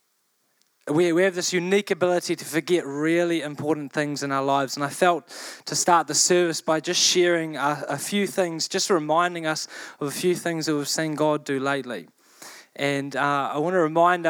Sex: male